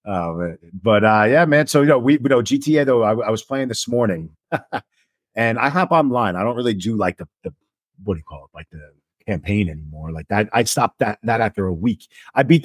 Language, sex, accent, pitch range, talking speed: English, male, American, 100-135 Hz, 240 wpm